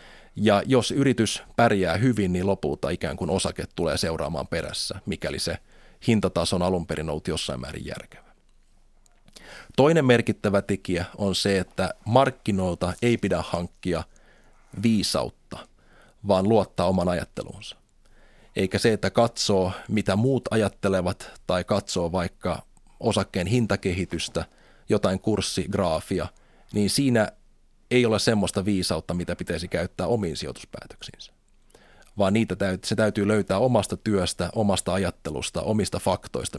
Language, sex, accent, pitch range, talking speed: Finnish, male, native, 90-110 Hz, 125 wpm